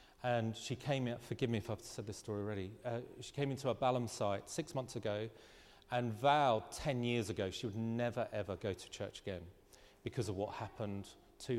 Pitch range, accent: 105-135 Hz, British